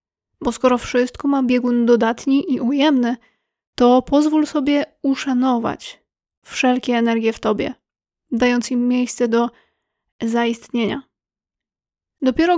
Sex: female